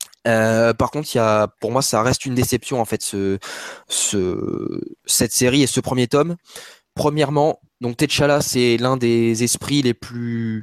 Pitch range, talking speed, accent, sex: 115-140 Hz, 175 wpm, French, male